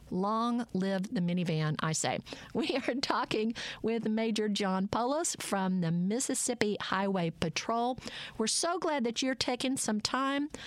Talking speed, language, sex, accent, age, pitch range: 145 wpm, English, female, American, 50-69, 185-235 Hz